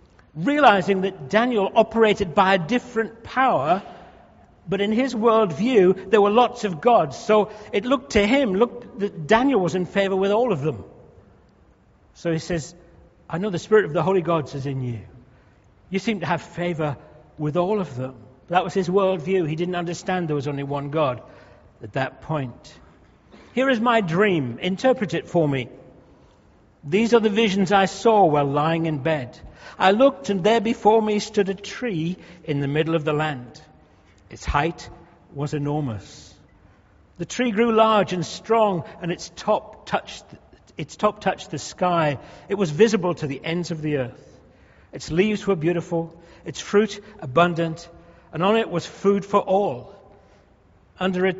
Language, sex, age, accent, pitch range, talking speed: English, male, 60-79, British, 155-205 Hz, 170 wpm